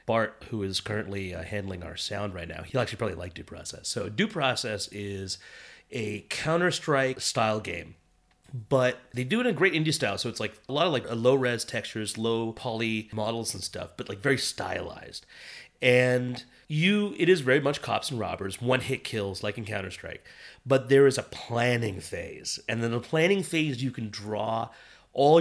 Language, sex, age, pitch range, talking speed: English, male, 30-49, 105-150 Hz, 200 wpm